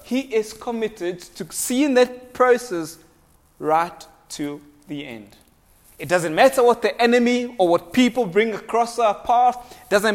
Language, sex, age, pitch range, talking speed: English, male, 30-49, 165-230 Hz, 155 wpm